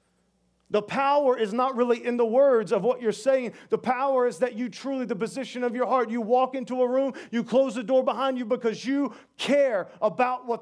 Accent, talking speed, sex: American, 220 wpm, male